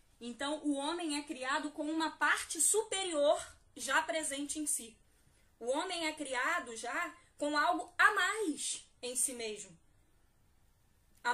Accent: Brazilian